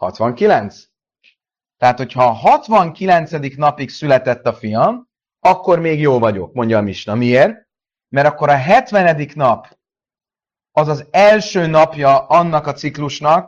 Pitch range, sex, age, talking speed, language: 135-190 Hz, male, 30-49, 130 wpm, Hungarian